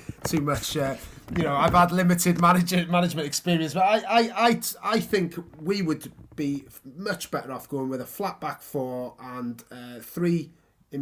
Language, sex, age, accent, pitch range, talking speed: English, male, 30-49, British, 125-165 Hz, 180 wpm